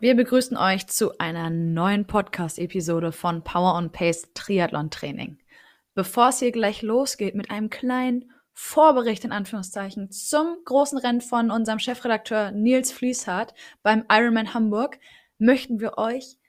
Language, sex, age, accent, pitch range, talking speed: German, female, 20-39, German, 190-240 Hz, 125 wpm